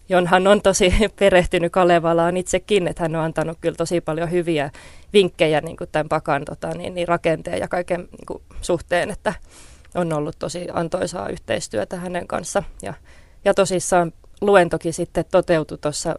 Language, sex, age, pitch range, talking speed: Finnish, female, 20-39, 160-175 Hz, 150 wpm